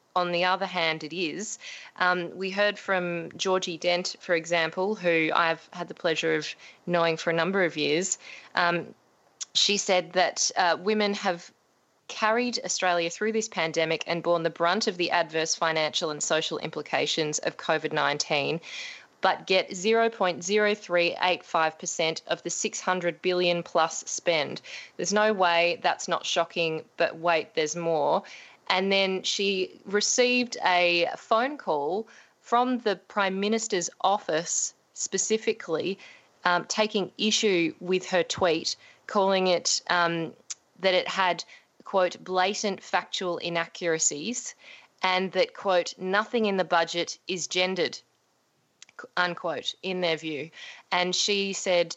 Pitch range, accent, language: 170-200 Hz, Australian, English